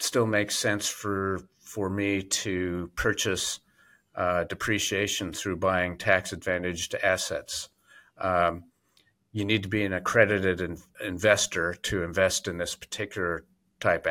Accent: American